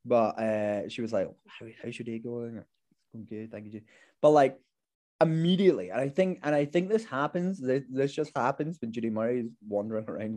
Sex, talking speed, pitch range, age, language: male, 210 wpm, 120-160 Hz, 20-39, English